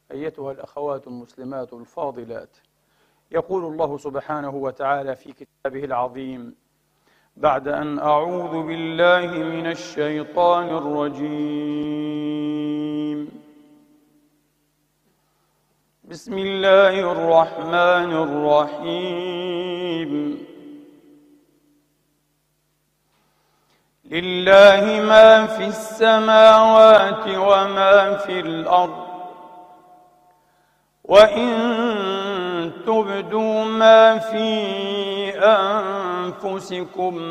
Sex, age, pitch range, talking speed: male, 50-69, 165-205 Hz, 55 wpm